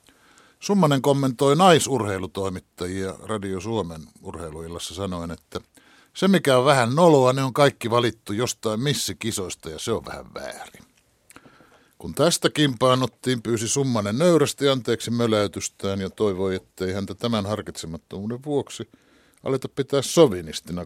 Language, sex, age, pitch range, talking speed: Finnish, male, 60-79, 100-135 Hz, 125 wpm